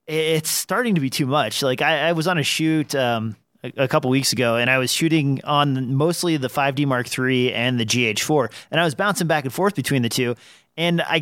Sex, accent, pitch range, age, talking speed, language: male, American, 130-165 Hz, 30-49, 245 wpm, English